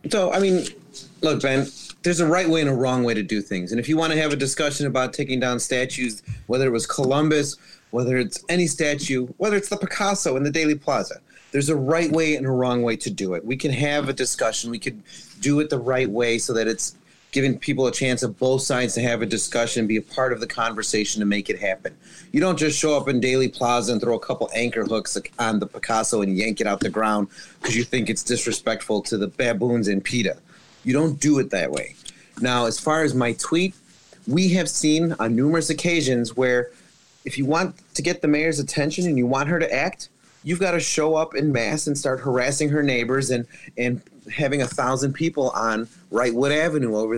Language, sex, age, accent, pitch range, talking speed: English, male, 30-49, American, 120-155 Hz, 230 wpm